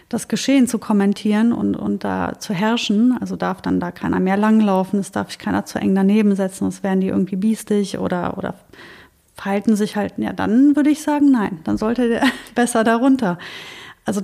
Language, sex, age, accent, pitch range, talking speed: German, female, 30-49, German, 200-240 Hz, 195 wpm